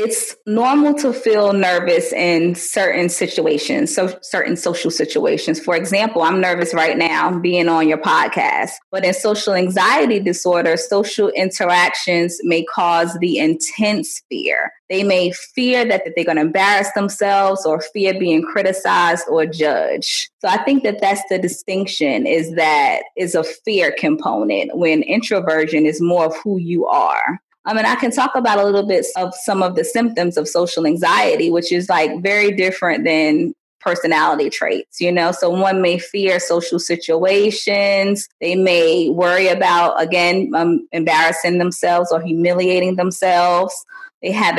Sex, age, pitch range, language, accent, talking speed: female, 20-39, 170-215 Hz, English, American, 155 wpm